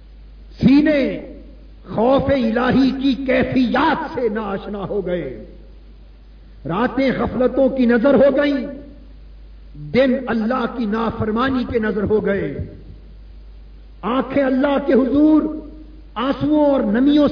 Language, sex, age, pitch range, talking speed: Urdu, male, 50-69, 155-255 Hz, 105 wpm